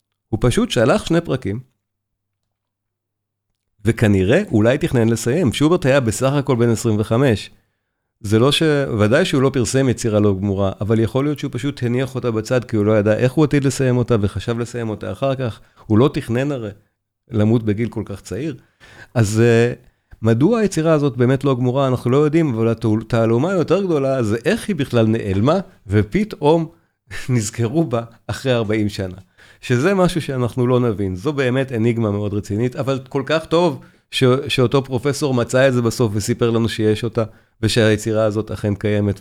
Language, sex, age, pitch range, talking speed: Hebrew, male, 50-69, 105-135 Hz, 170 wpm